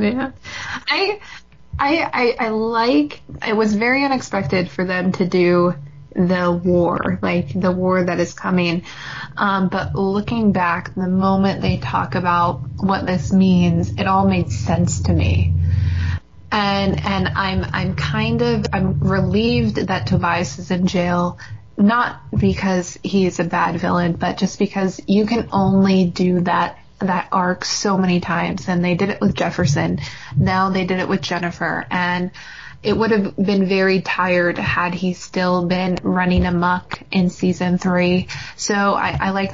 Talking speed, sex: 160 wpm, female